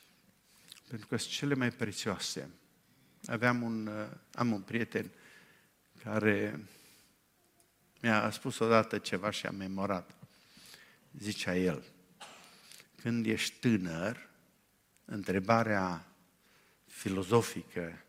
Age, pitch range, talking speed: 50-69, 105-130 Hz, 85 wpm